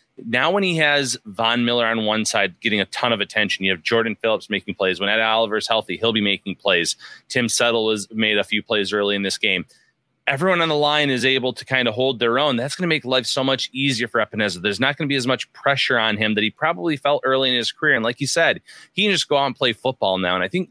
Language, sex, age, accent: English, male, 30-49, American